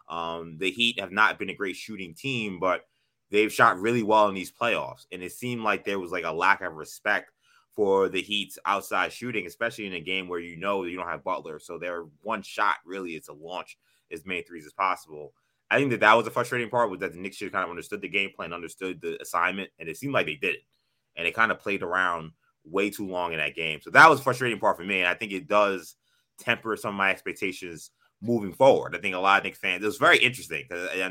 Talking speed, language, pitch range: 255 wpm, English, 95-120 Hz